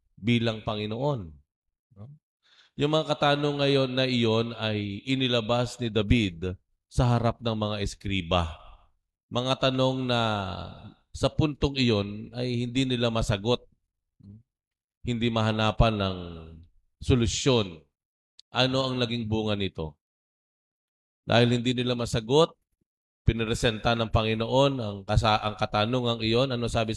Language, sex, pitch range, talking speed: Filipino, male, 95-120 Hz, 110 wpm